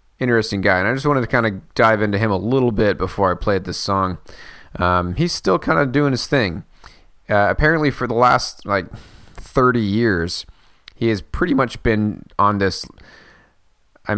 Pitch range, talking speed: 90-115 Hz, 185 wpm